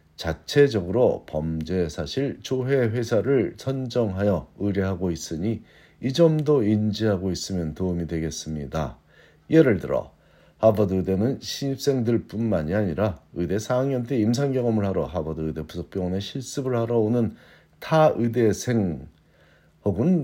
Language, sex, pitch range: Korean, male, 90-120 Hz